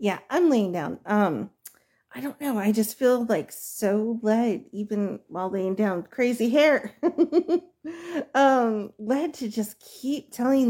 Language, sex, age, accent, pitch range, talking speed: English, female, 40-59, American, 200-255 Hz, 145 wpm